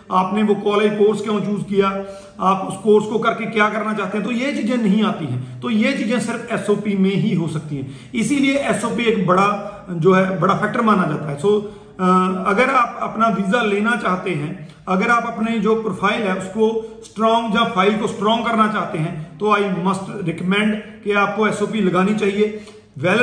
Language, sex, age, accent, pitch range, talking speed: Hindi, male, 40-59, native, 190-220 Hz, 195 wpm